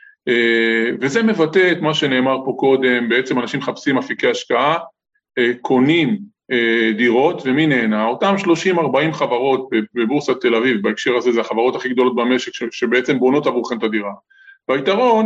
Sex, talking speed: male, 155 wpm